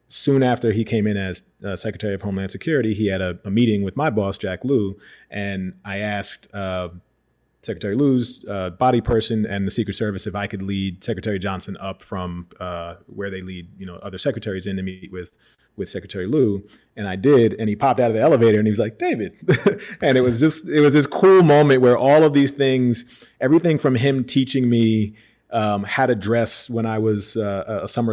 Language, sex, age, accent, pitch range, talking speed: English, male, 30-49, American, 100-115 Hz, 215 wpm